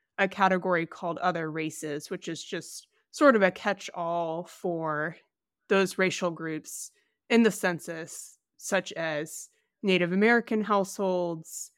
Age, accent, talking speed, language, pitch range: 20-39, American, 120 wpm, English, 165-200 Hz